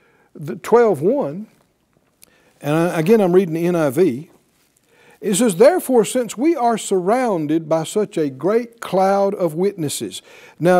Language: English